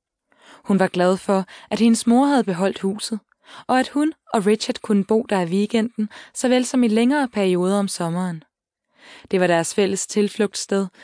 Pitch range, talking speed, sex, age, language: 185-235 Hz, 175 wpm, female, 20-39, Danish